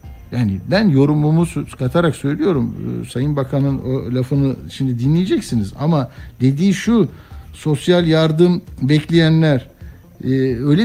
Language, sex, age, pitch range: Turkish, male, 60-79, 115-170 Hz